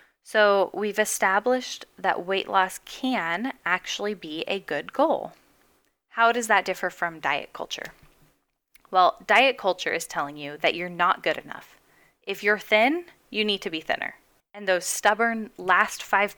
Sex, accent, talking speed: female, American, 160 wpm